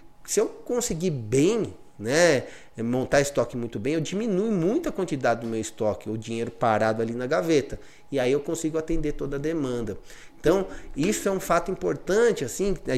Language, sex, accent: Portuguese, male, Brazilian